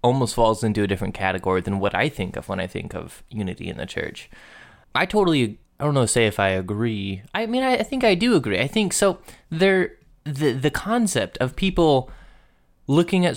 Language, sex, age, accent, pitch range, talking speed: English, male, 20-39, American, 105-140 Hz, 210 wpm